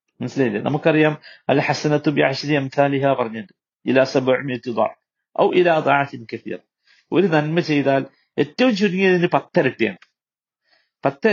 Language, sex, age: Malayalam, male, 50-69